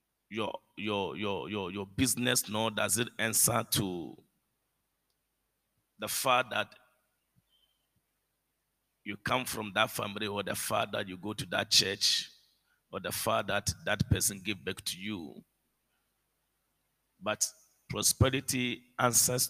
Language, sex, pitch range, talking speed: English, male, 105-140 Hz, 125 wpm